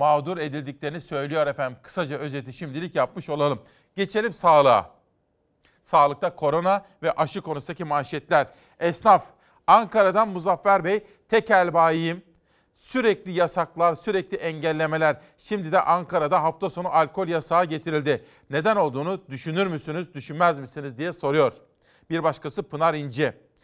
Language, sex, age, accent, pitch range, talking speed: Turkish, male, 40-59, native, 145-180 Hz, 120 wpm